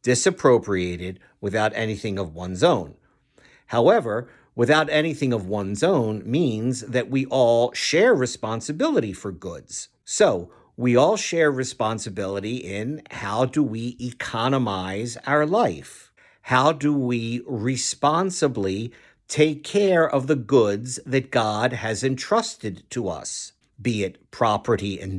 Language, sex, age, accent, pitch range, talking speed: English, male, 50-69, American, 110-150 Hz, 120 wpm